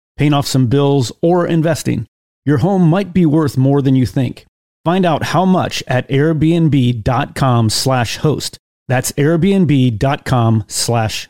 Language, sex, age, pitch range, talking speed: English, male, 30-49, 125-155 Hz, 140 wpm